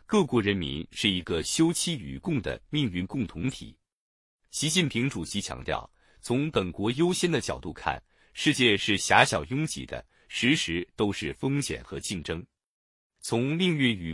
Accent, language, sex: native, Chinese, male